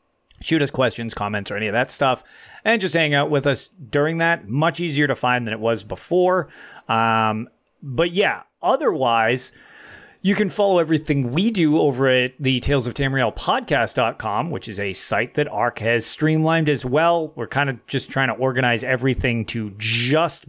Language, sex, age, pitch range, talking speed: English, male, 30-49, 120-160 Hz, 180 wpm